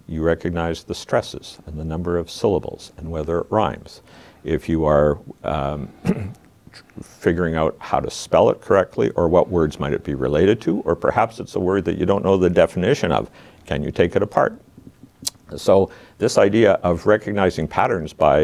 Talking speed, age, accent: 180 wpm, 60-79, American